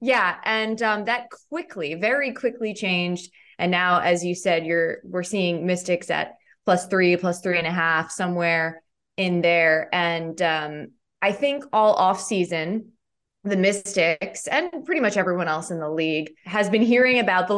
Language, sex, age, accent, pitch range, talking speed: English, female, 20-39, American, 170-205 Hz, 165 wpm